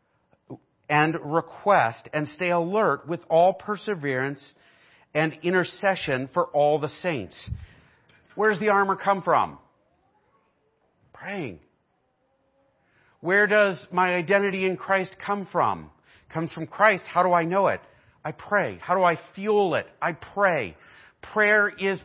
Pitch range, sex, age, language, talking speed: 150-195 Hz, male, 40-59, English, 130 wpm